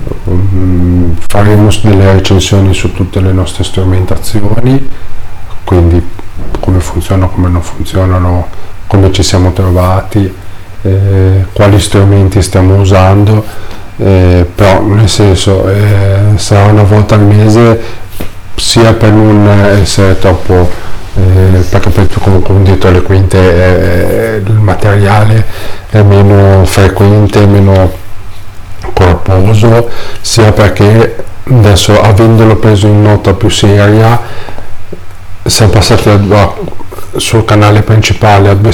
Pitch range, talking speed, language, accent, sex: 95-105 Hz, 110 wpm, Italian, native, male